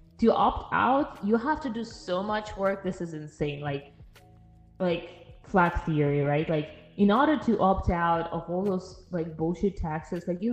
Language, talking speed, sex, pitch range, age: Bulgarian, 180 wpm, female, 160-205 Hz, 20-39